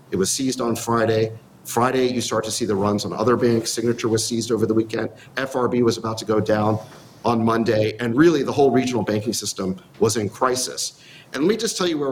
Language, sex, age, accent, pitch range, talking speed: English, male, 40-59, American, 110-145 Hz, 230 wpm